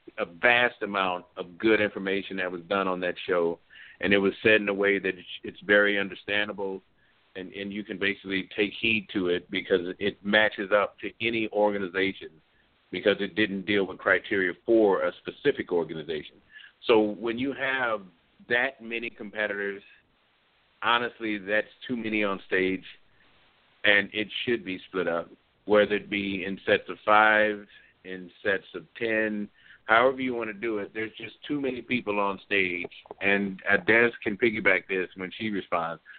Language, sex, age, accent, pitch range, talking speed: English, male, 50-69, American, 100-115 Hz, 165 wpm